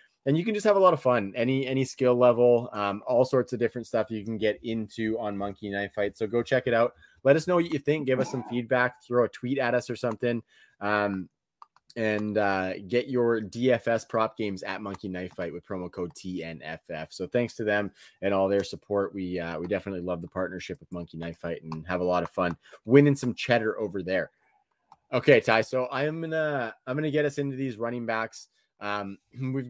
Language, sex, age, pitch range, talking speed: English, male, 20-39, 100-130 Hz, 225 wpm